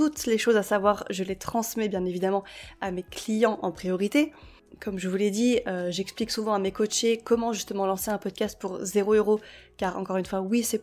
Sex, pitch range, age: female, 200-245 Hz, 20-39